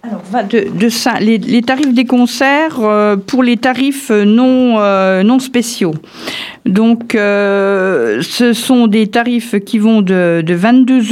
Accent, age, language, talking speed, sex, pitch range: French, 50-69, French, 150 wpm, female, 190-235 Hz